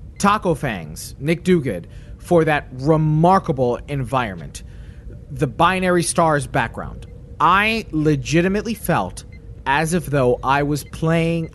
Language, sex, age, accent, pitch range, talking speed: English, male, 30-49, American, 130-170 Hz, 110 wpm